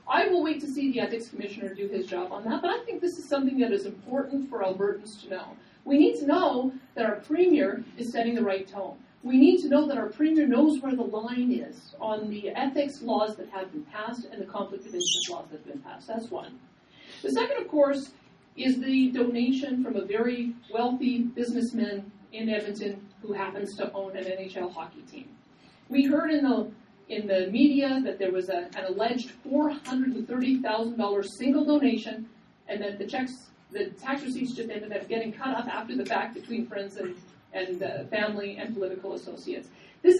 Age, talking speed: 40-59, 195 wpm